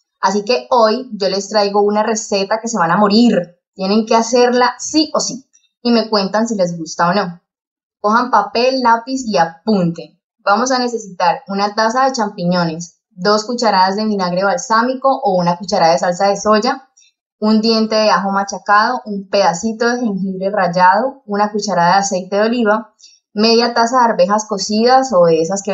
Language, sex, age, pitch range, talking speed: Spanish, female, 20-39, 190-245 Hz, 175 wpm